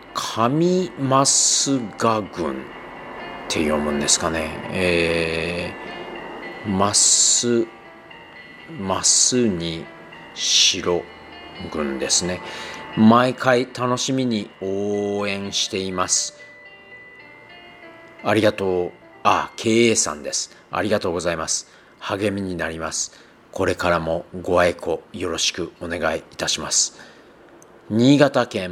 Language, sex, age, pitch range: Japanese, male, 40-59, 85-115 Hz